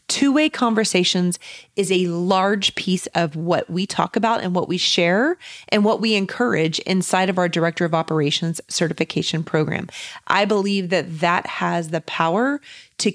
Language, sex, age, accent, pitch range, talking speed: English, female, 30-49, American, 175-220 Hz, 160 wpm